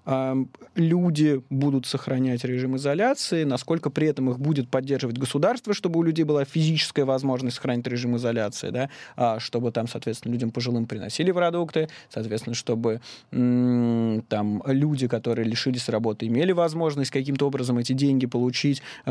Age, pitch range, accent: 20-39, 120-155 Hz, native